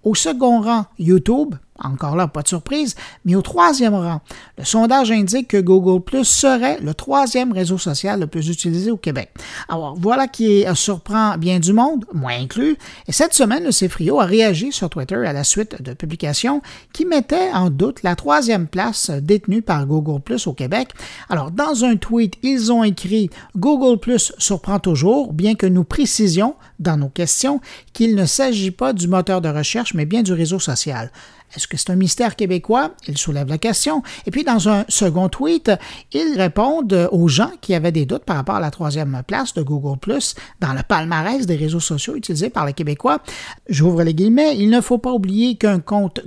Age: 50-69